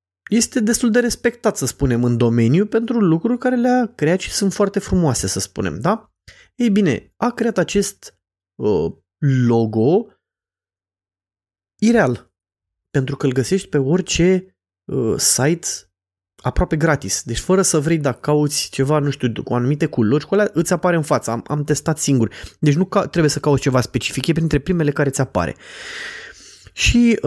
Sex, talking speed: male, 165 wpm